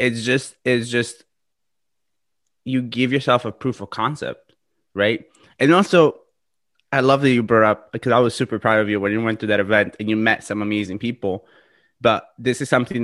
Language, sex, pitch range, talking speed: English, male, 110-135 Hz, 200 wpm